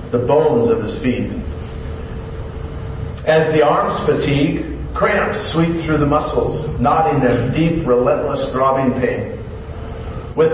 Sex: male